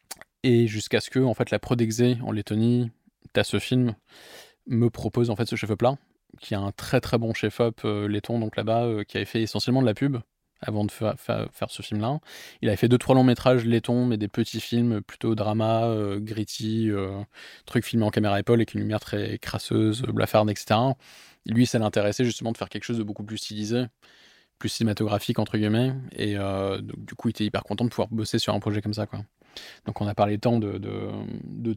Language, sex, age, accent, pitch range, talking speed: French, male, 20-39, French, 105-120 Hz, 220 wpm